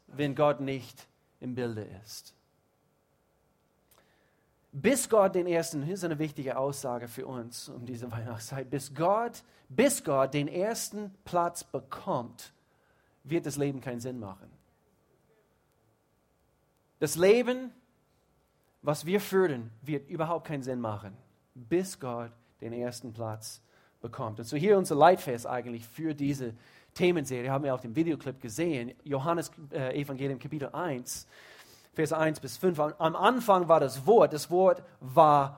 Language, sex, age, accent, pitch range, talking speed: German, male, 40-59, German, 130-170 Hz, 140 wpm